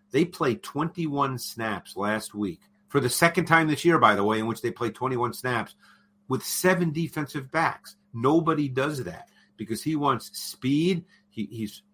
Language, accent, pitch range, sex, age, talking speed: English, American, 110-140 Hz, male, 50-69, 165 wpm